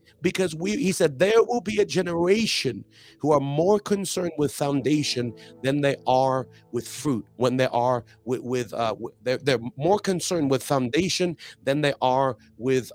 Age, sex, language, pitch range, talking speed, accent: 50-69, male, English, 110-145 Hz, 165 wpm, American